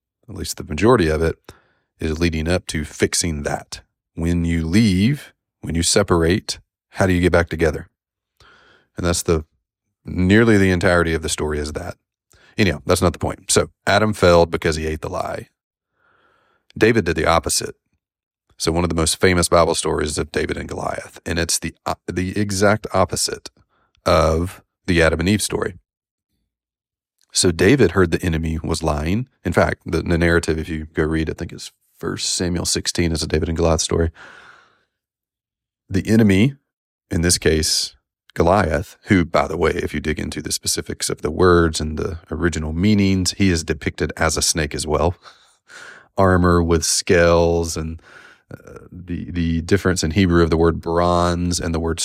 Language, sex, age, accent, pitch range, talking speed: English, male, 30-49, American, 80-95 Hz, 175 wpm